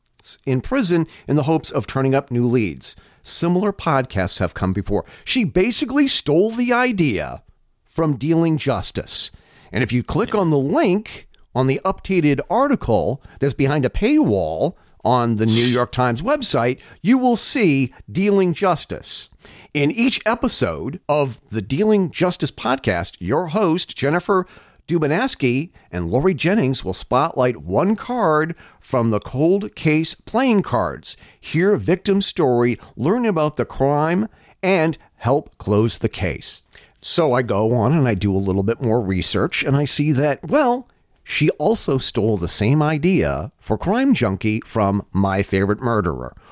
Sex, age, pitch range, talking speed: male, 40-59, 115-185 Hz, 150 wpm